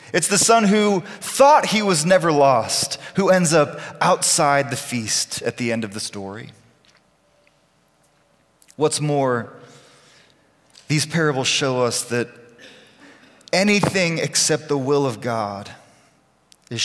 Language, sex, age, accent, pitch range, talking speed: English, male, 30-49, American, 115-155 Hz, 125 wpm